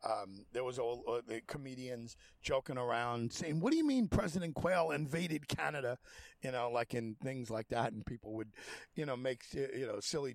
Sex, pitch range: male, 125-160 Hz